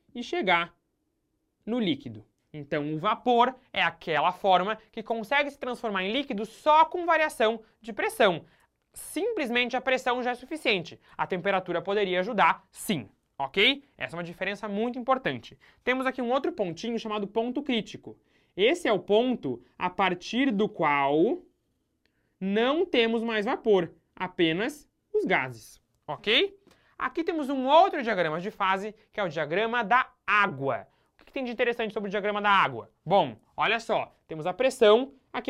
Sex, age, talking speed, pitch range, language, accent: male, 20-39, 155 wpm, 180-255 Hz, Portuguese, Brazilian